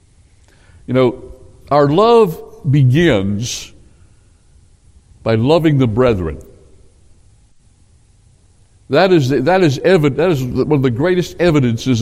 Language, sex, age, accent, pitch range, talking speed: English, male, 60-79, American, 95-145 Hz, 100 wpm